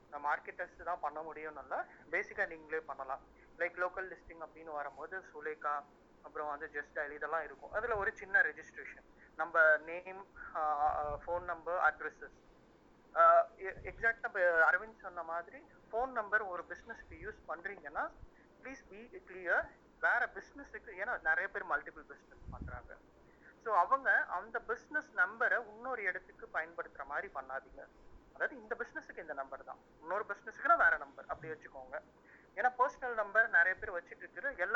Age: 30-49